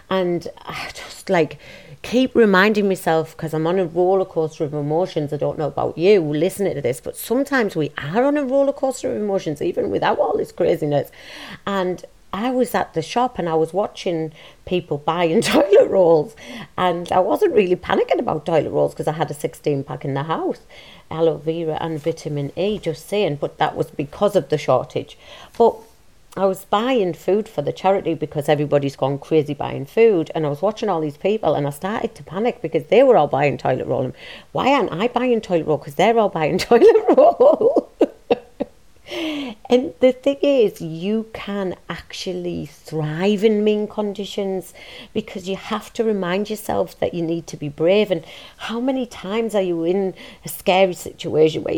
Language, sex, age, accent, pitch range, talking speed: English, female, 40-59, British, 160-240 Hz, 190 wpm